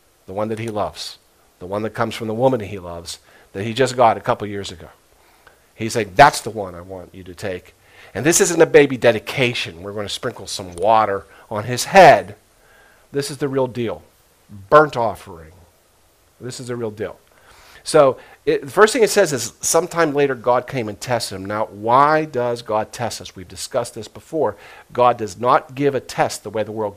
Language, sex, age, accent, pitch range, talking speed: English, male, 50-69, American, 105-135 Hz, 215 wpm